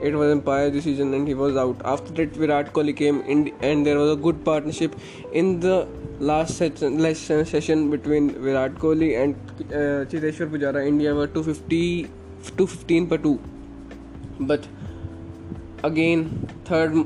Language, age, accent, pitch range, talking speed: Hindi, 20-39, native, 140-155 Hz, 150 wpm